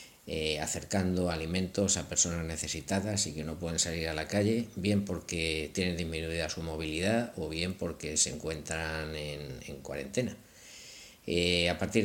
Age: 50-69